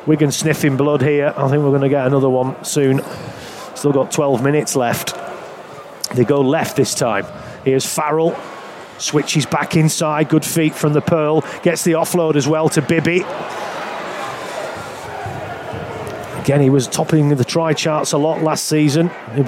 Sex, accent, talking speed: male, British, 160 wpm